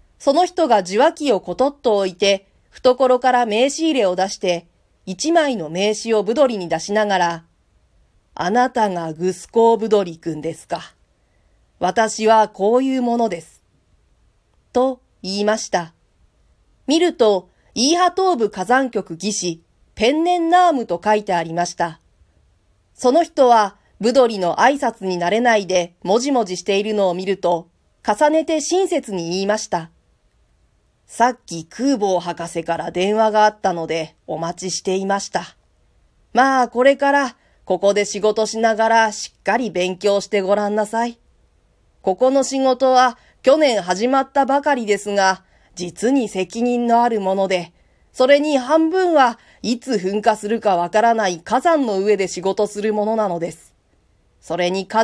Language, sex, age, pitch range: Japanese, female, 40-59, 180-250 Hz